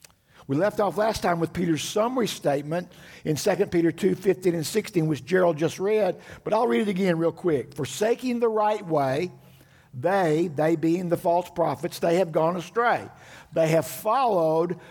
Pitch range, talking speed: 135-185 Hz, 175 wpm